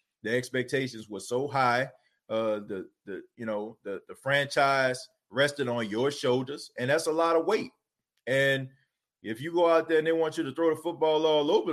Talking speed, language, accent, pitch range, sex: 200 wpm, English, American, 120-145 Hz, male